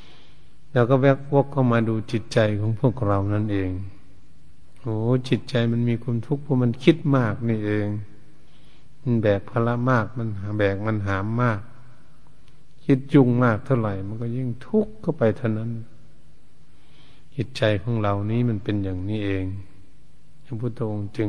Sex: male